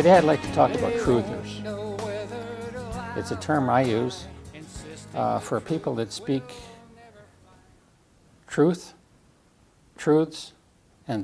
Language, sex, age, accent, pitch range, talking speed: English, male, 60-79, American, 115-145 Hz, 105 wpm